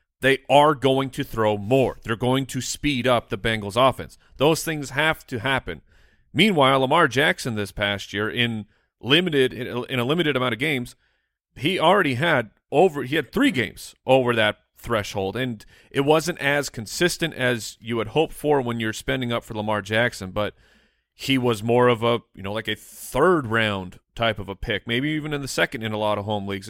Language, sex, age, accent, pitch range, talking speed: English, male, 30-49, American, 105-135 Hz, 200 wpm